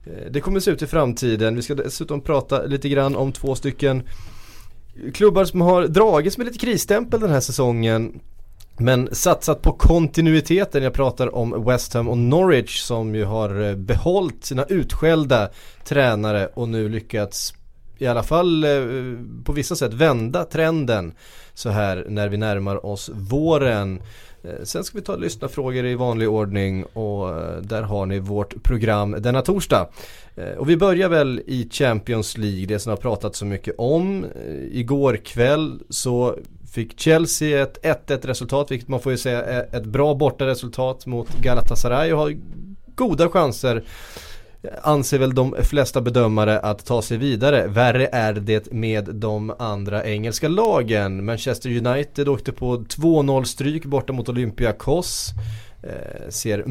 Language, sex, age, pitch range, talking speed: Swedish, male, 20-39, 110-145 Hz, 150 wpm